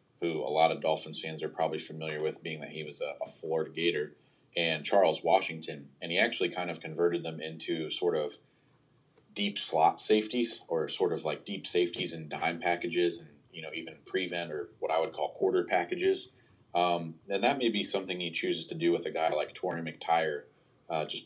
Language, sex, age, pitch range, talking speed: English, male, 30-49, 80-95 Hz, 205 wpm